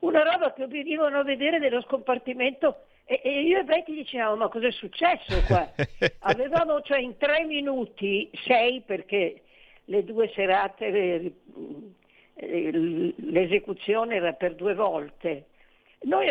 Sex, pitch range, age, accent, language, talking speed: female, 205-285 Hz, 50-69, native, Italian, 120 wpm